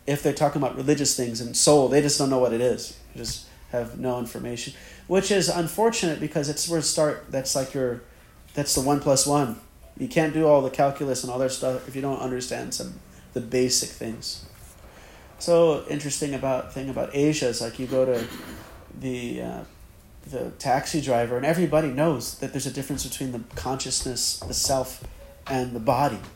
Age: 30-49